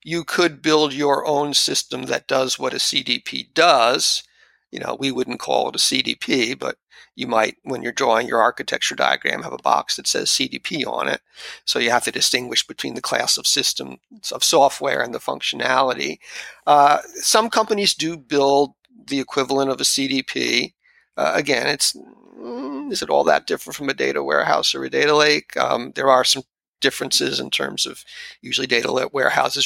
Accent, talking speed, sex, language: American, 180 wpm, male, English